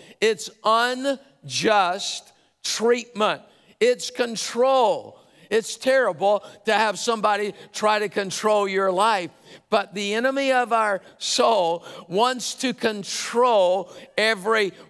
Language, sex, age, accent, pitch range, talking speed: English, male, 50-69, American, 195-230 Hz, 100 wpm